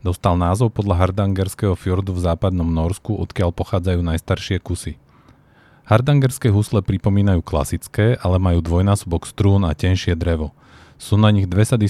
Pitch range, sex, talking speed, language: 90-105 Hz, male, 140 wpm, Slovak